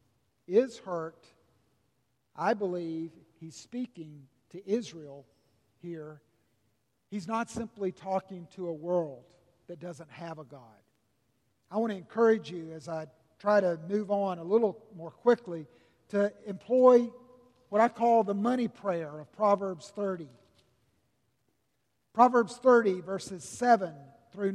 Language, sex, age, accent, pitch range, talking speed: English, male, 50-69, American, 140-220 Hz, 125 wpm